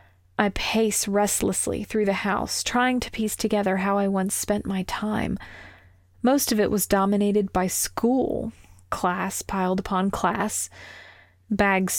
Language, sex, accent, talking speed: English, female, American, 140 wpm